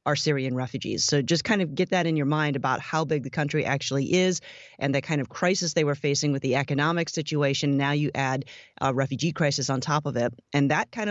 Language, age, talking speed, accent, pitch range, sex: English, 30-49, 240 wpm, American, 140-165 Hz, female